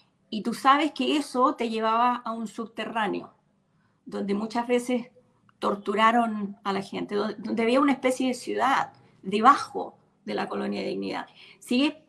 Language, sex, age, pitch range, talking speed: Spanish, female, 40-59, 215-270 Hz, 150 wpm